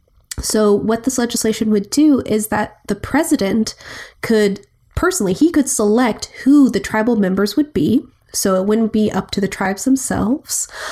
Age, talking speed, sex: 20-39, 165 wpm, female